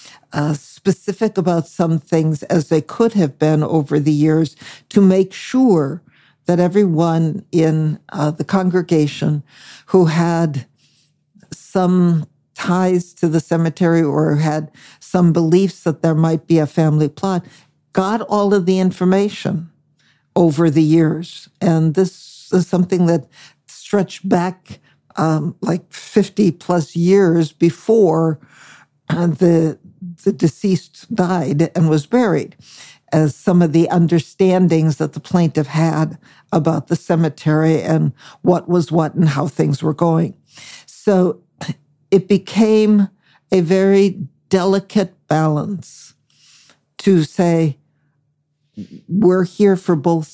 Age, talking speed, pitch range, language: 60-79, 125 wpm, 155-185 Hz, English